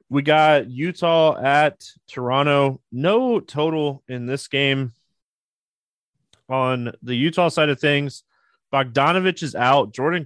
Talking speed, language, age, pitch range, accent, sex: 115 wpm, English, 20-39, 120-150 Hz, American, male